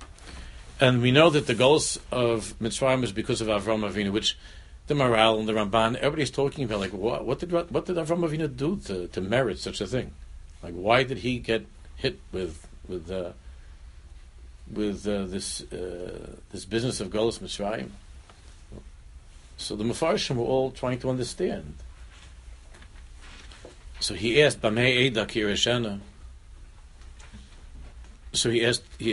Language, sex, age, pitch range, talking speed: English, male, 60-79, 70-115 Hz, 150 wpm